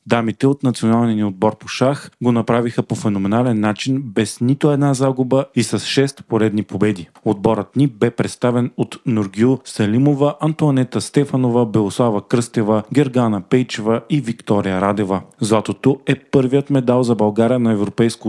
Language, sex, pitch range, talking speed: Bulgarian, male, 105-130 Hz, 150 wpm